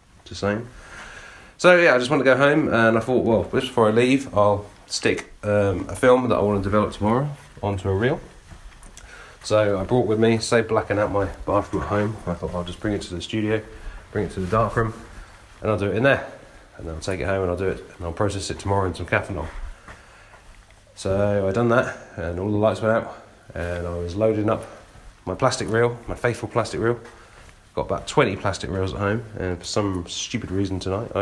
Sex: male